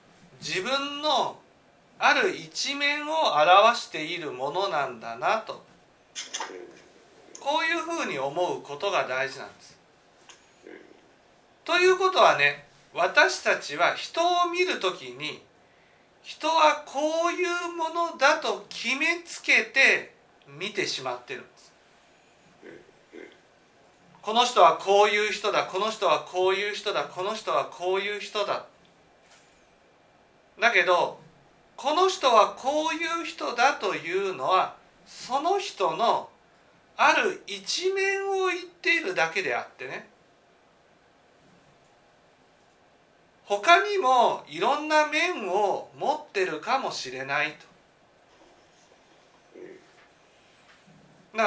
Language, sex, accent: Japanese, male, native